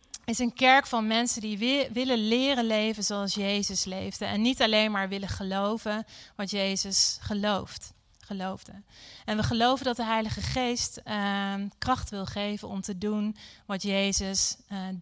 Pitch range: 195-225 Hz